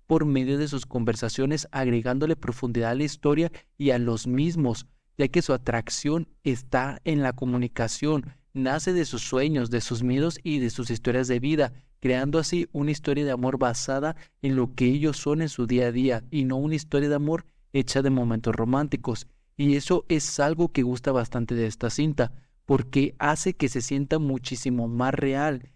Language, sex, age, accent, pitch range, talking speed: Spanish, male, 30-49, Mexican, 125-145 Hz, 185 wpm